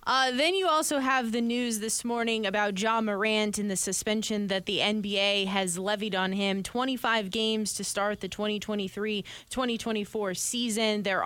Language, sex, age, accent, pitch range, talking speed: English, female, 20-39, American, 190-225 Hz, 160 wpm